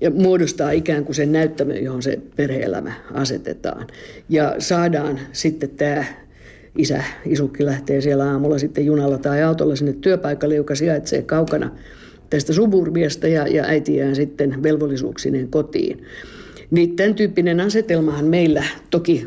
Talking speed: 135 wpm